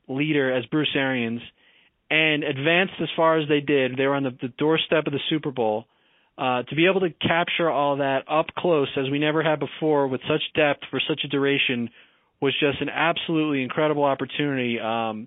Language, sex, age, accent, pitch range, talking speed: English, male, 30-49, American, 130-155 Hz, 195 wpm